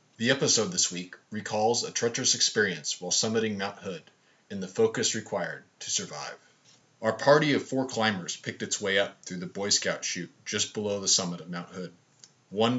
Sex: male